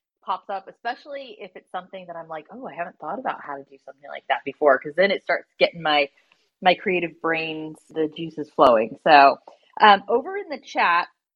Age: 30-49